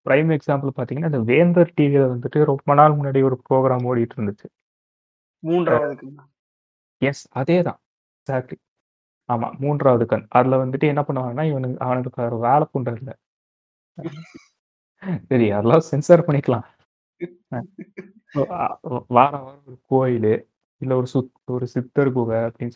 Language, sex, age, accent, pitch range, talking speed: Tamil, male, 30-49, native, 120-145 Hz, 115 wpm